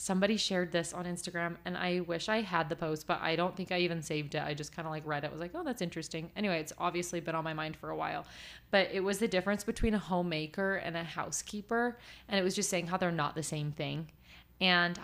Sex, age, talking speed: female, 30-49, 265 wpm